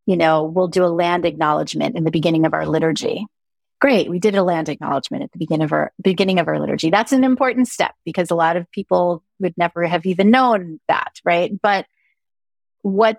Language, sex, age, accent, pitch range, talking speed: English, female, 30-49, American, 165-200 Hz, 210 wpm